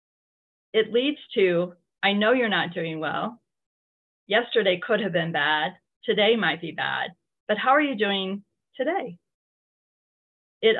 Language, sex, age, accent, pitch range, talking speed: English, female, 30-49, American, 170-235 Hz, 140 wpm